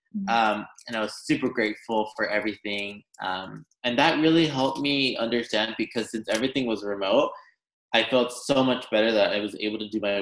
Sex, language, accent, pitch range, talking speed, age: male, English, American, 105-125 Hz, 190 wpm, 20-39